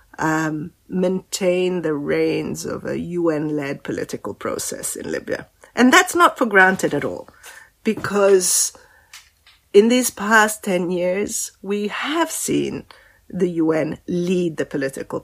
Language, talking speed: English, 125 wpm